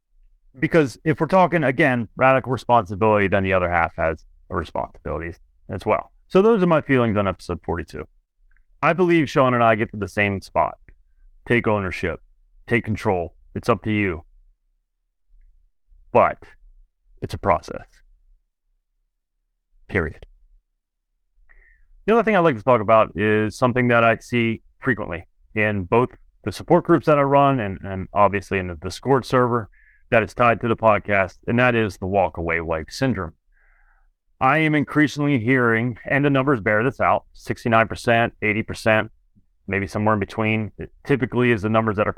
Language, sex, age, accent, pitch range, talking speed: English, male, 30-49, American, 95-125 Hz, 155 wpm